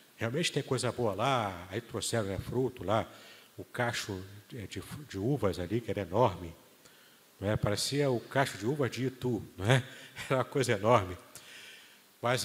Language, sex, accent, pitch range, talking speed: Portuguese, male, Brazilian, 105-135 Hz, 160 wpm